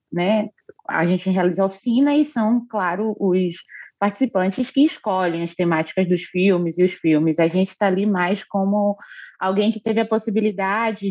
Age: 20-39